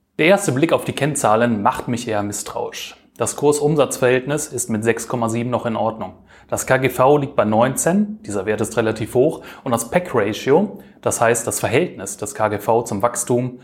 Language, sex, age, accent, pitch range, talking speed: German, male, 30-49, German, 110-145 Hz, 175 wpm